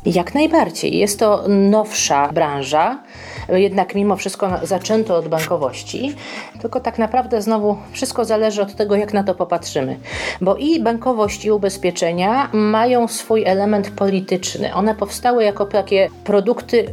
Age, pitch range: 40-59, 185-235 Hz